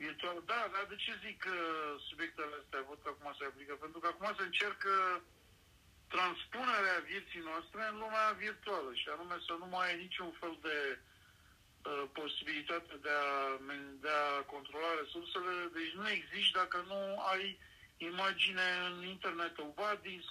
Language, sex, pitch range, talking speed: Romanian, male, 145-190 Hz, 160 wpm